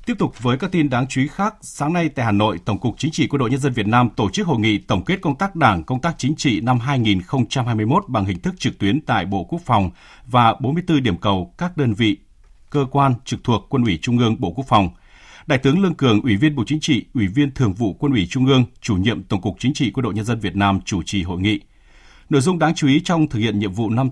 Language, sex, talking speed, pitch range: Vietnamese, male, 275 wpm, 105-140 Hz